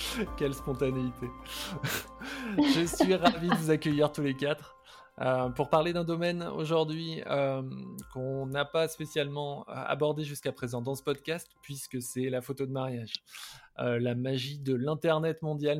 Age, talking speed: 20-39, 150 wpm